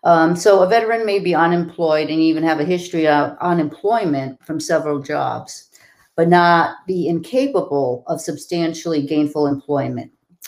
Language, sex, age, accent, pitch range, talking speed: English, female, 50-69, American, 145-160 Hz, 135 wpm